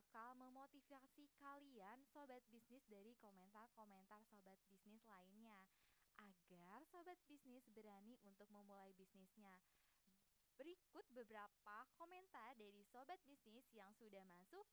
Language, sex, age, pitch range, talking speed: Indonesian, female, 20-39, 200-255 Hz, 105 wpm